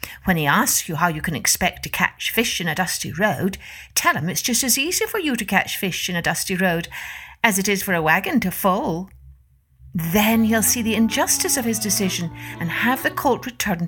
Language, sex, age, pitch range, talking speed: English, female, 60-79, 170-235 Hz, 220 wpm